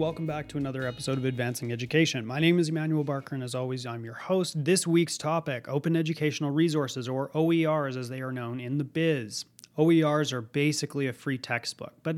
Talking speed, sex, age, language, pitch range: 200 wpm, male, 30-49, English, 130-160 Hz